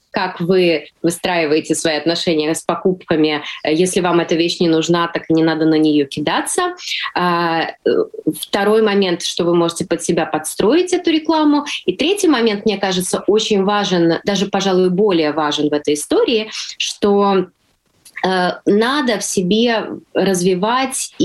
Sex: female